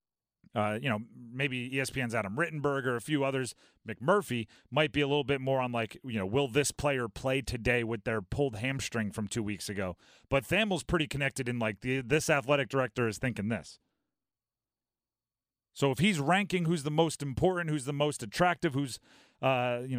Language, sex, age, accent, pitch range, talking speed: English, male, 40-59, American, 125-160 Hz, 190 wpm